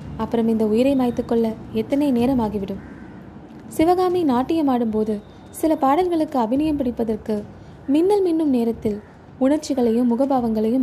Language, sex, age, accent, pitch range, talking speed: Tamil, female, 20-39, native, 225-300 Hz, 100 wpm